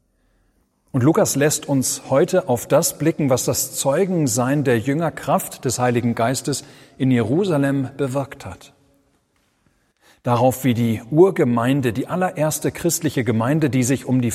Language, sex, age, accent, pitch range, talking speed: German, male, 40-59, German, 115-140 Hz, 135 wpm